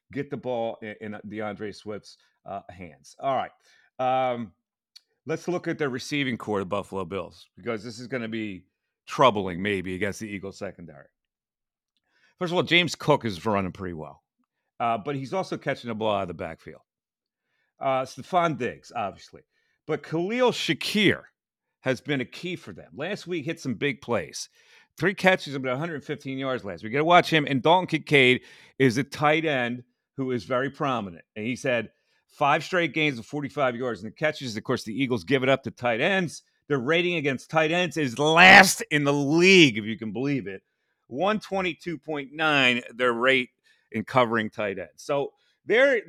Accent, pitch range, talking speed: American, 115-160 Hz, 185 wpm